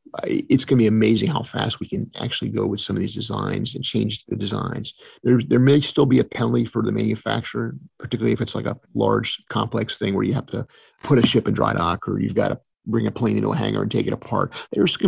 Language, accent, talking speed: English, American, 255 wpm